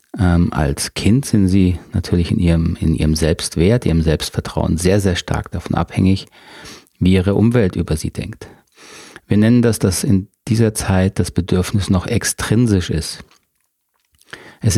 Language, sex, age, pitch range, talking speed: German, male, 40-59, 90-110 Hz, 145 wpm